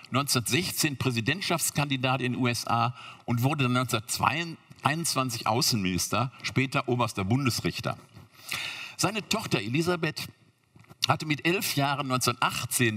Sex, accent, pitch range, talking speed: male, German, 110-140 Hz, 95 wpm